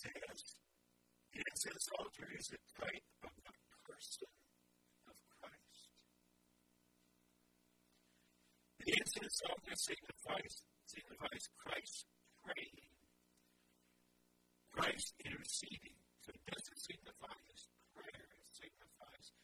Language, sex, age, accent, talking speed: English, male, 40-59, American, 95 wpm